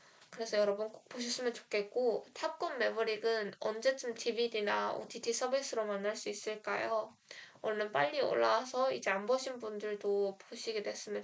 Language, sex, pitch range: Korean, female, 210-260 Hz